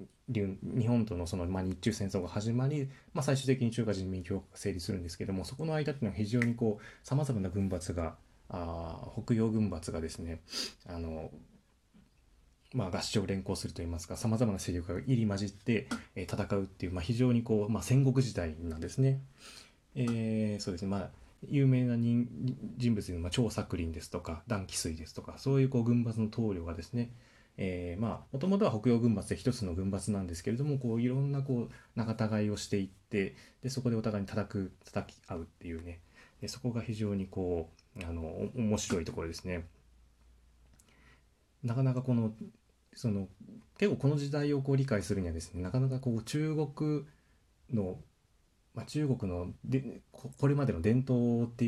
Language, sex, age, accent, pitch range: Japanese, male, 20-39, native, 90-125 Hz